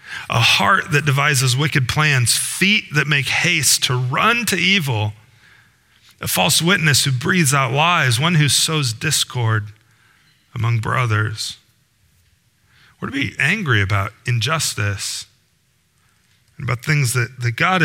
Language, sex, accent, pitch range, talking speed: English, male, American, 115-145 Hz, 130 wpm